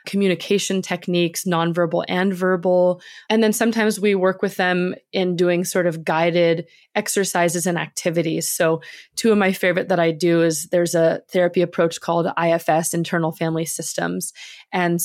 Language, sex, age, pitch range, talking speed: English, female, 20-39, 170-190 Hz, 155 wpm